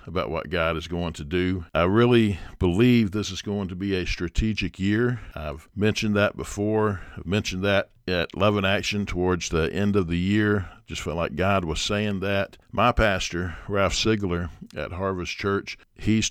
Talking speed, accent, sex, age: 185 wpm, American, male, 50-69